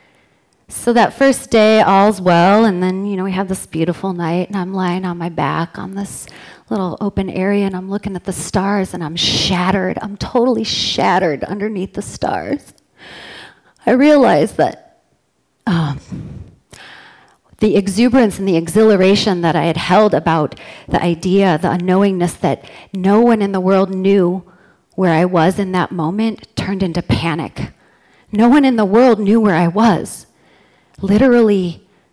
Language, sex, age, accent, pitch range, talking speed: English, female, 30-49, American, 175-205 Hz, 160 wpm